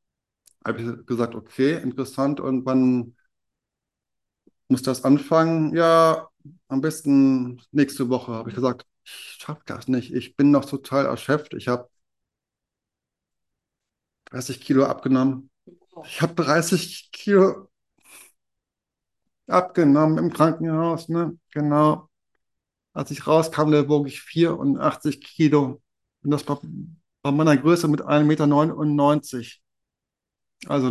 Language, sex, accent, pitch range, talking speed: German, male, German, 135-150 Hz, 115 wpm